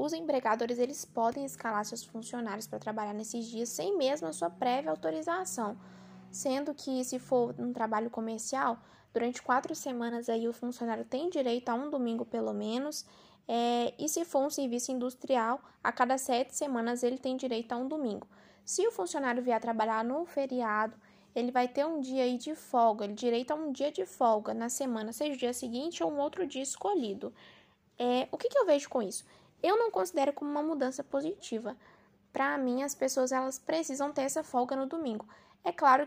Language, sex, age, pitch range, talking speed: Portuguese, female, 10-29, 235-285 Hz, 190 wpm